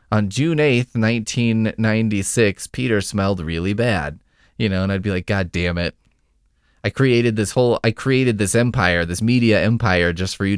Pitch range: 85-115 Hz